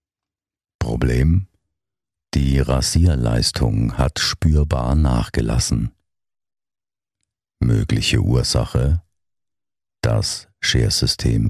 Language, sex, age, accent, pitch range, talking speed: German, male, 50-69, German, 65-100 Hz, 50 wpm